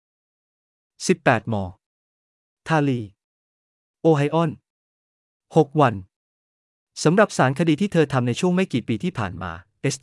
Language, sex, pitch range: Thai, male, 105-155 Hz